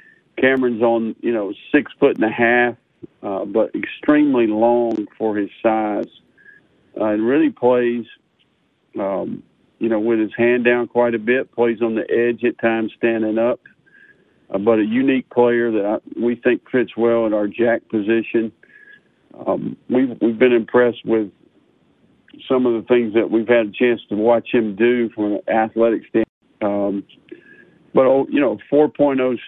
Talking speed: 165 wpm